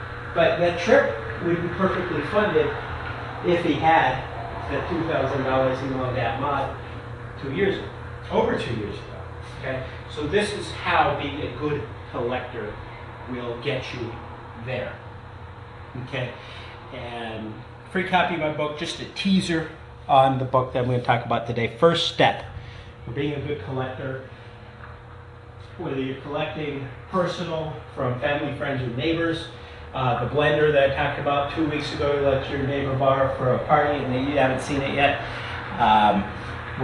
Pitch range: 120-150 Hz